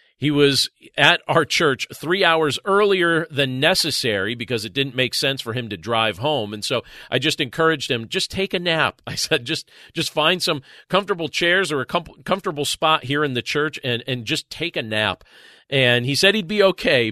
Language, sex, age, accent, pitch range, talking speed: English, male, 40-59, American, 105-155 Hz, 205 wpm